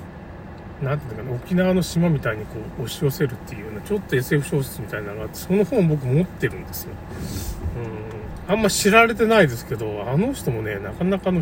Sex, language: male, Japanese